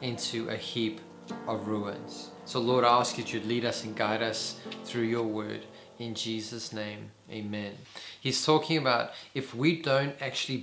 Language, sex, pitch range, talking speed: English, male, 115-140 Hz, 170 wpm